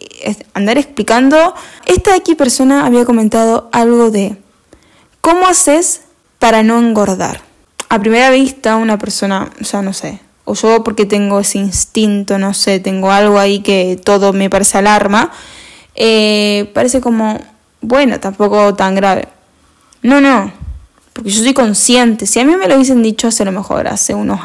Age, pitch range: 10-29, 205-260 Hz